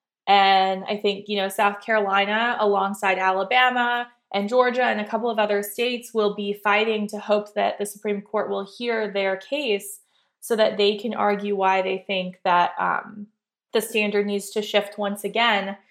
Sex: female